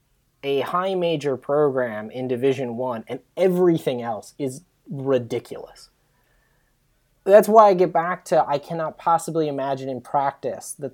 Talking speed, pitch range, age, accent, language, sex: 135 wpm, 120-145 Hz, 20-39, American, English, male